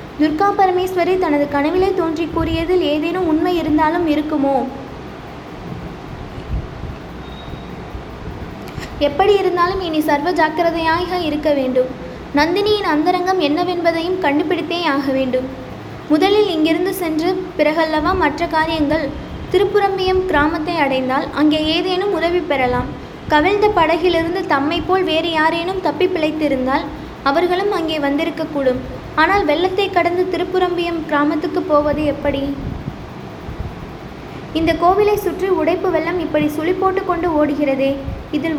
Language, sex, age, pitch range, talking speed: Tamil, female, 20-39, 300-360 Hz, 105 wpm